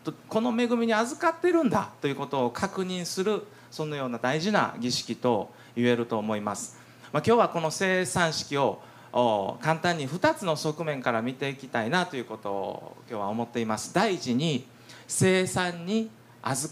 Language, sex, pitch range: Japanese, male, 120-170 Hz